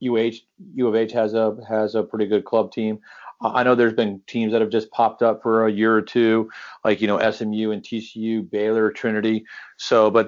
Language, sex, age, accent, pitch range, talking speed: English, male, 40-59, American, 105-120 Hz, 215 wpm